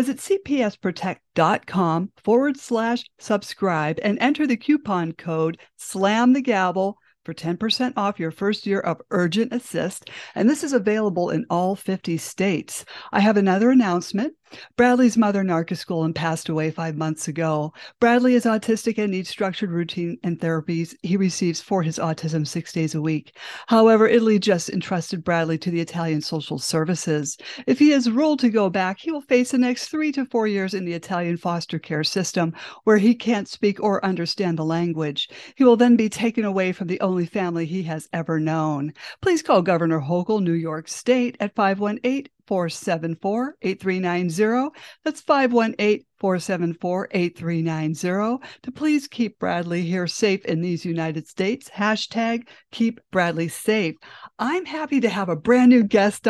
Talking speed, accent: 160 wpm, American